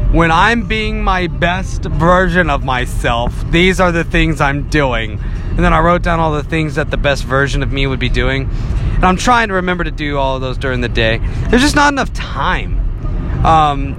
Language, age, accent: English, 30-49, American